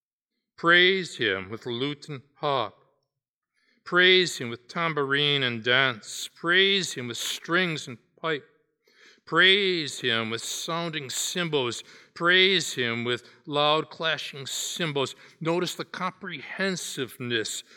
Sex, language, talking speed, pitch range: male, English, 110 wpm, 125-165 Hz